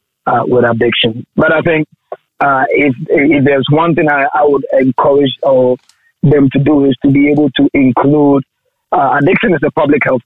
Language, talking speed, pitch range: English, 185 wpm, 130-150 Hz